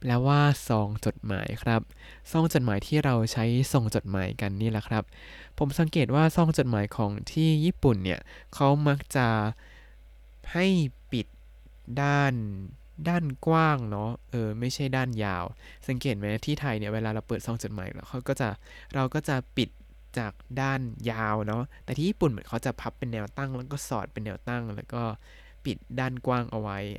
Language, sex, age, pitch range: Thai, male, 20-39, 105-140 Hz